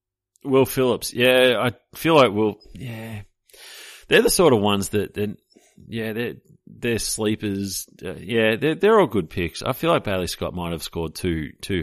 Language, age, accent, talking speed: English, 40-59, Australian, 180 wpm